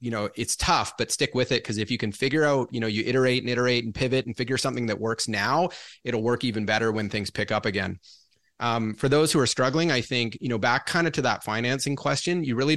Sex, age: male, 30-49